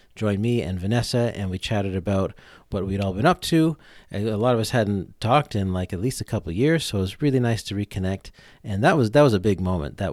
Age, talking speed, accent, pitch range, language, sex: 40-59, 260 wpm, American, 100-130 Hz, English, male